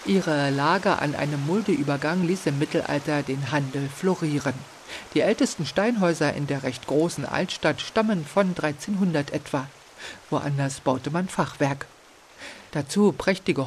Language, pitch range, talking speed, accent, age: German, 140-170 Hz, 125 wpm, German, 50-69